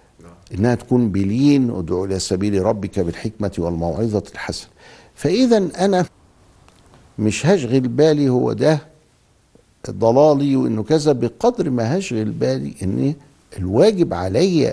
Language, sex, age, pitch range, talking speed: Arabic, male, 60-79, 95-130 Hz, 110 wpm